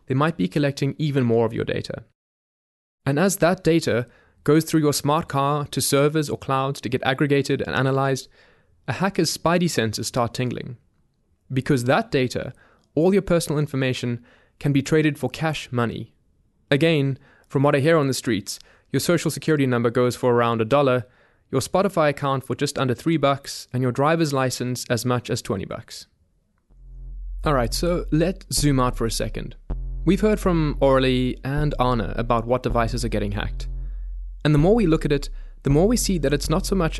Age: 20-39